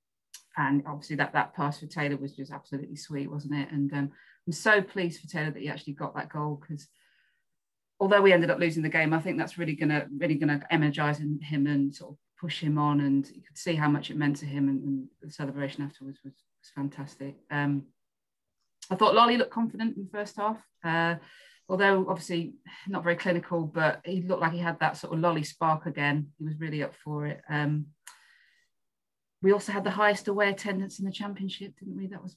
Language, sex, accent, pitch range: English, female, British, 145-175 Hz